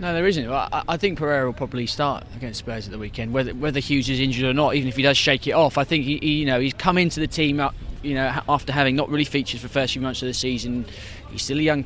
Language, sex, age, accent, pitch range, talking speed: English, male, 20-39, British, 120-155 Hz, 305 wpm